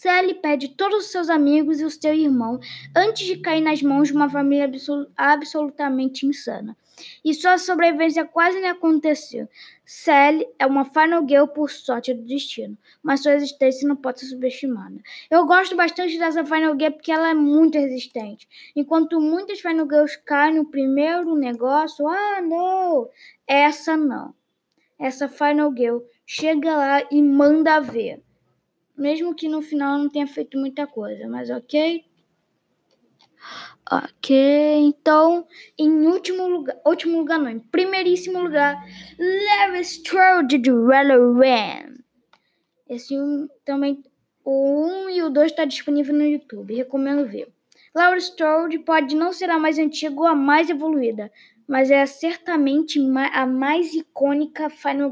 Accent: Brazilian